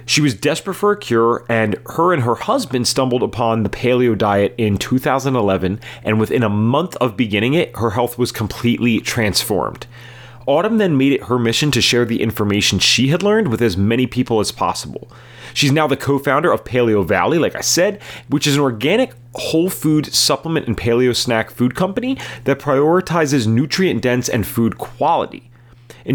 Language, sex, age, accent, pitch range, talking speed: English, male, 30-49, American, 105-140 Hz, 180 wpm